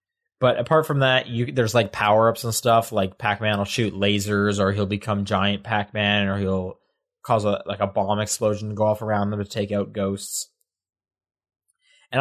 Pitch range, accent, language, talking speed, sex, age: 105-130 Hz, American, English, 190 wpm, male, 20-39